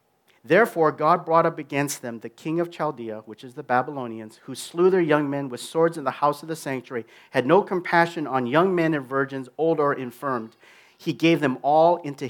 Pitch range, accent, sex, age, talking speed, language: 135-180 Hz, American, male, 40-59, 210 wpm, English